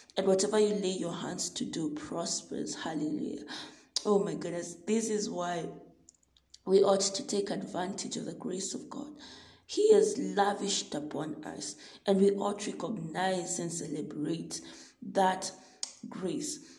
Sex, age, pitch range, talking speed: female, 20-39, 180-215 Hz, 145 wpm